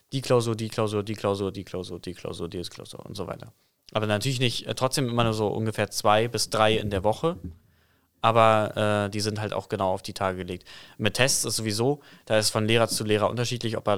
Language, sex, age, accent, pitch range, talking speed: German, male, 20-39, German, 100-120 Hz, 230 wpm